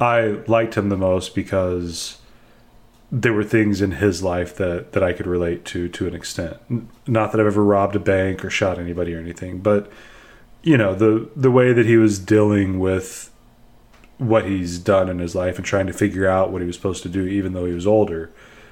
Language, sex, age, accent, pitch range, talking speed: English, male, 30-49, American, 100-115 Hz, 210 wpm